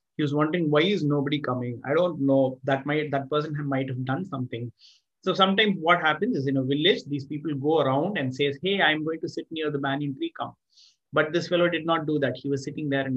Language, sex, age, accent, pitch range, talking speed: Tamil, male, 30-49, native, 135-175 Hz, 255 wpm